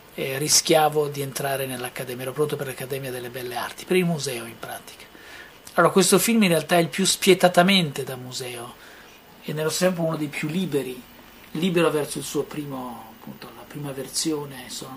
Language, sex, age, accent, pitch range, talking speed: Italian, male, 40-59, native, 140-170 Hz, 185 wpm